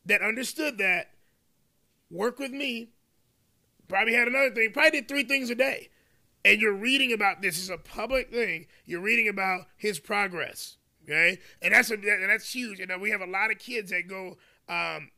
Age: 30-49